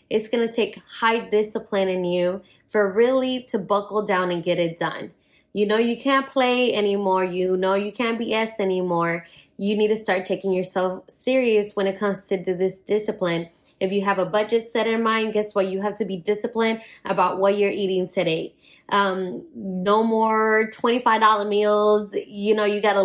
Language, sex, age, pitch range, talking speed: English, female, 10-29, 195-220 Hz, 185 wpm